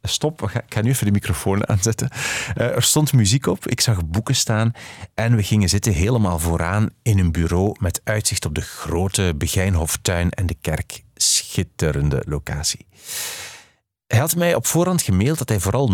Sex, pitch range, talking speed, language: male, 95-130 Hz, 170 wpm, Dutch